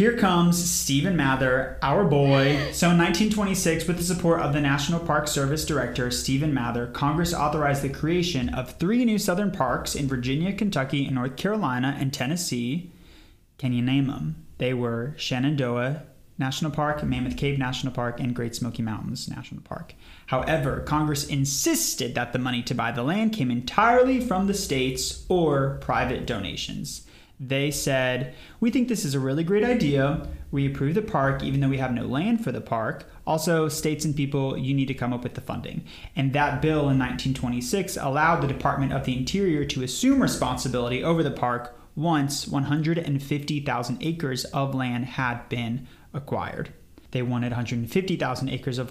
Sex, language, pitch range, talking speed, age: male, English, 125-155 Hz, 170 wpm, 30-49